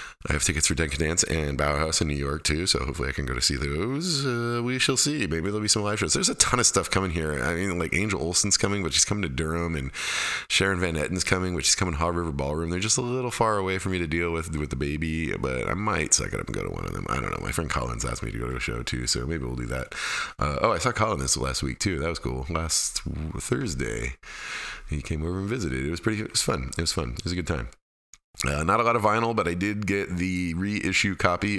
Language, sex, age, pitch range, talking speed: English, male, 20-39, 70-95 Hz, 285 wpm